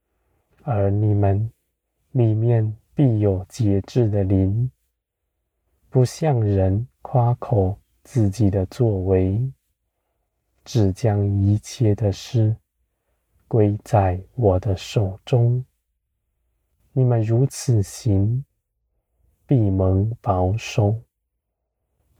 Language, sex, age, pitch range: Chinese, male, 20-39, 90-115 Hz